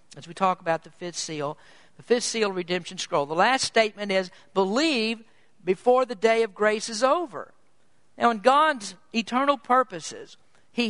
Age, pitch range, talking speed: 50-69, 190-260 Hz, 165 wpm